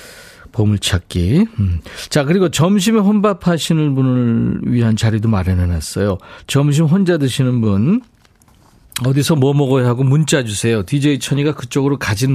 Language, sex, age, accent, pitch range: Korean, male, 40-59, native, 105-145 Hz